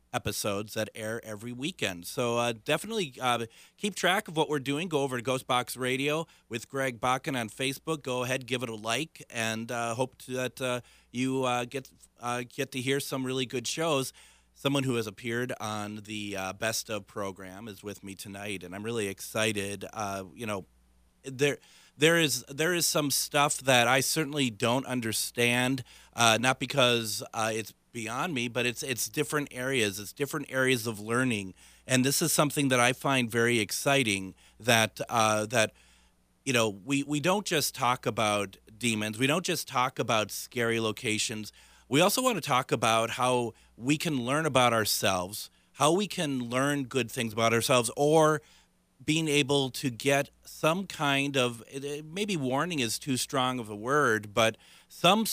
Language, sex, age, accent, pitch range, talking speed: English, male, 30-49, American, 110-140 Hz, 180 wpm